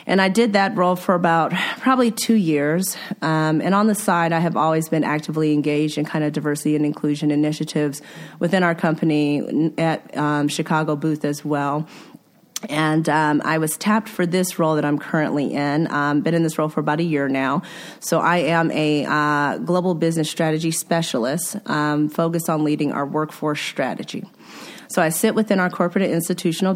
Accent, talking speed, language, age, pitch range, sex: American, 185 wpm, English, 30-49, 150-175 Hz, female